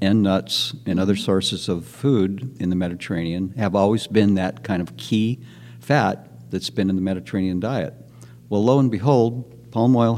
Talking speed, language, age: 175 wpm, English, 60-79